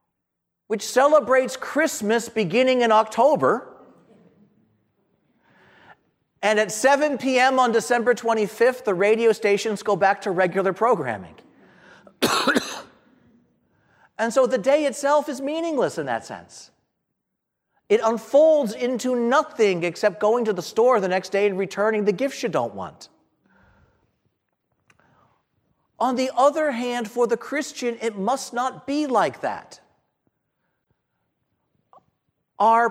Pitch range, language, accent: 200-260 Hz, English, American